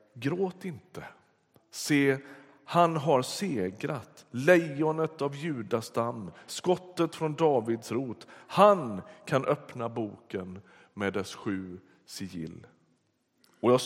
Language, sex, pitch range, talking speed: Swedish, male, 110-160 Hz, 100 wpm